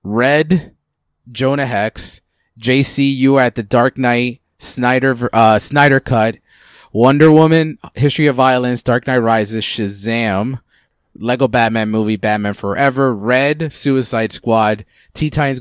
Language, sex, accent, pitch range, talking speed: English, male, American, 110-135 Hz, 125 wpm